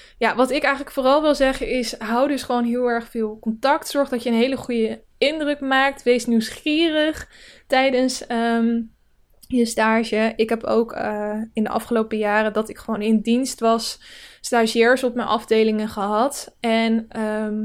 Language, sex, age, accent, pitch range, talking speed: Dutch, female, 10-29, Dutch, 225-260 Hz, 165 wpm